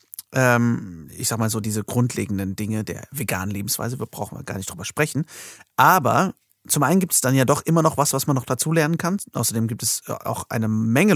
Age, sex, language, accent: 30-49, male, German, German